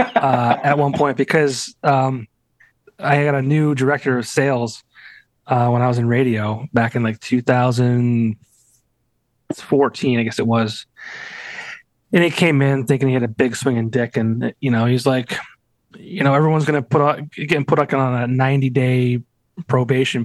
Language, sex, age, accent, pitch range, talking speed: English, male, 30-49, American, 120-145 Hz, 170 wpm